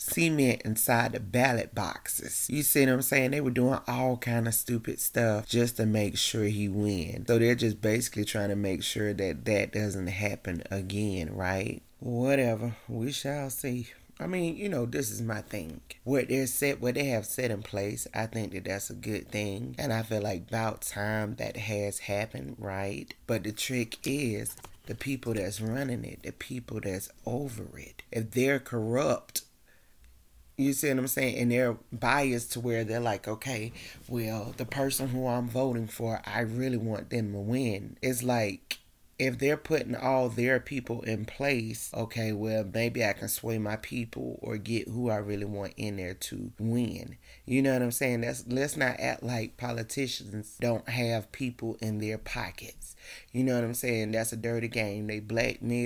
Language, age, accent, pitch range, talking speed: English, 30-49, American, 105-125 Hz, 185 wpm